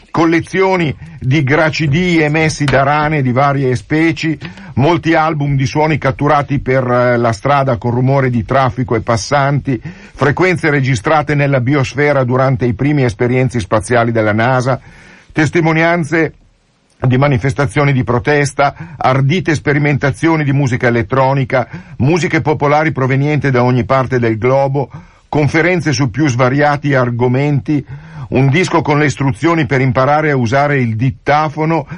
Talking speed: 130 wpm